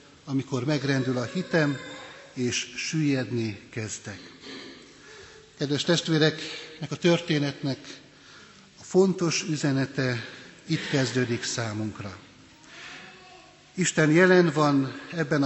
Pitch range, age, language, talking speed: 135-160 Hz, 60-79, Hungarian, 85 wpm